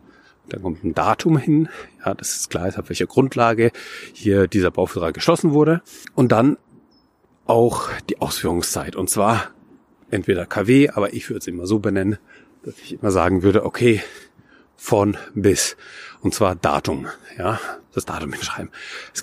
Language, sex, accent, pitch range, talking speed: German, male, German, 105-135 Hz, 155 wpm